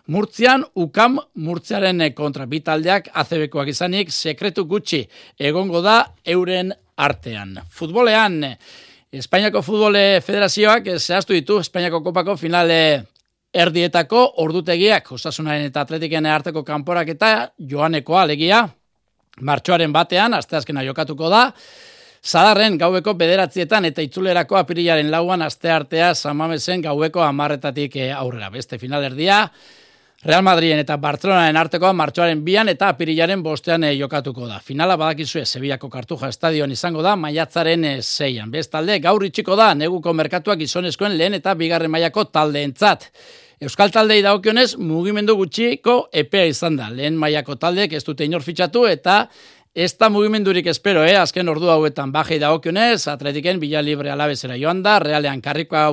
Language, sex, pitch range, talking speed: Spanish, male, 150-190 Hz, 135 wpm